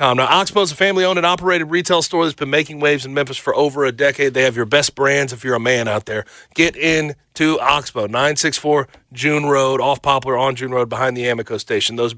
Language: English